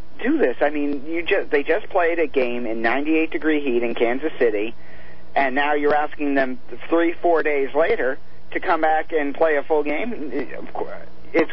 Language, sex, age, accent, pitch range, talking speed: English, male, 40-59, American, 125-165 Hz, 180 wpm